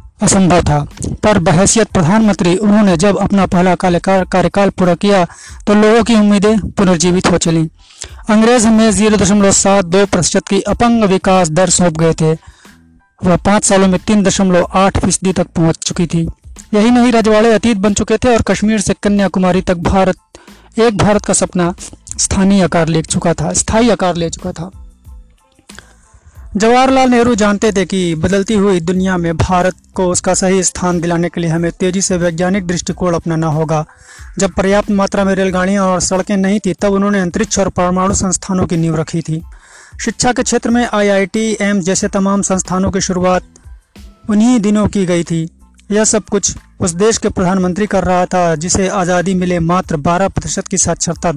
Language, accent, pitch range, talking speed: Hindi, native, 175-205 Hz, 165 wpm